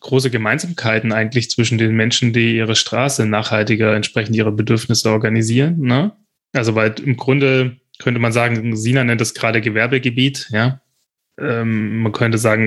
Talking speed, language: 150 wpm, German